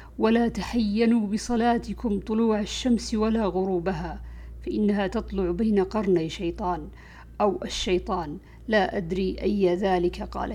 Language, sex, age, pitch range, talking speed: Arabic, female, 50-69, 190-225 Hz, 110 wpm